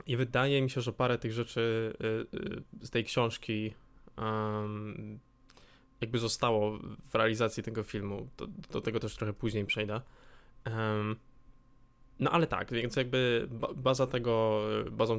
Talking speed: 125 wpm